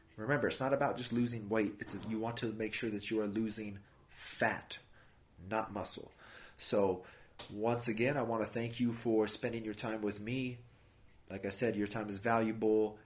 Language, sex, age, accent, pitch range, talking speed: English, male, 30-49, American, 105-120 Hz, 190 wpm